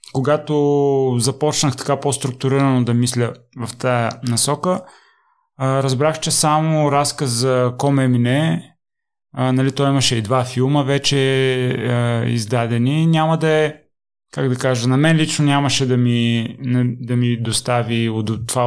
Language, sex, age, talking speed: Bulgarian, male, 30-49, 130 wpm